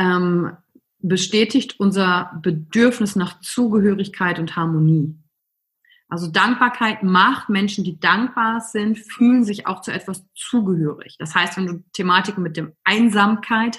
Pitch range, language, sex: 180-245 Hz, German, female